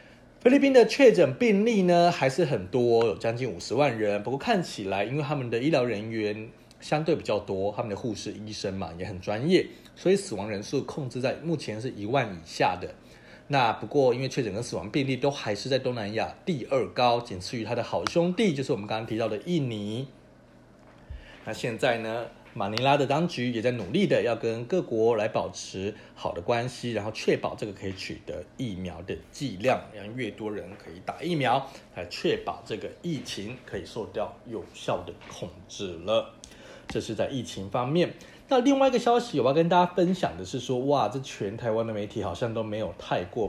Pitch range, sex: 105-160 Hz, male